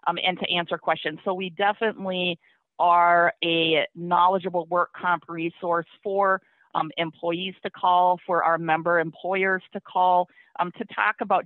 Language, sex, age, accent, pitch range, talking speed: English, female, 40-59, American, 160-190 Hz, 150 wpm